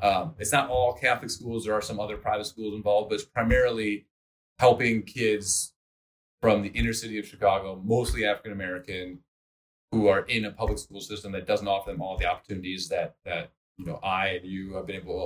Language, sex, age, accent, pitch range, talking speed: English, male, 30-49, American, 90-110 Hz, 200 wpm